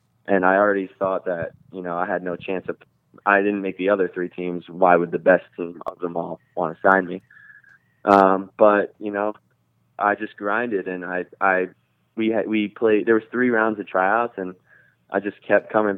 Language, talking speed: English, 210 wpm